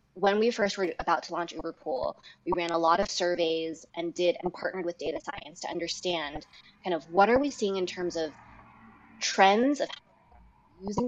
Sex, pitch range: female, 165-205 Hz